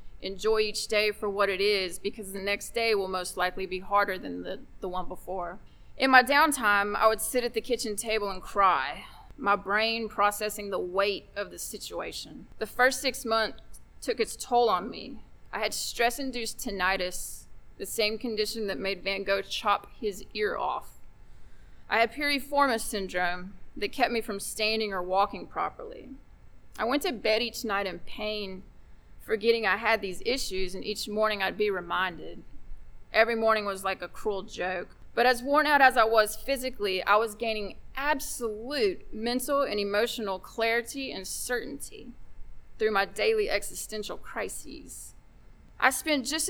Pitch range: 195-235 Hz